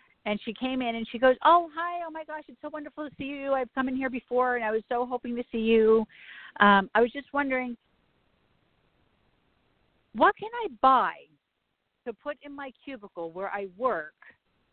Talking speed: 195 wpm